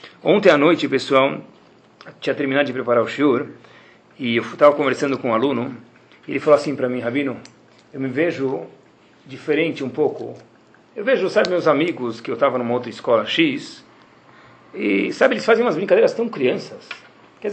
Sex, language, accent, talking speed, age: male, Portuguese, Brazilian, 175 wpm, 40-59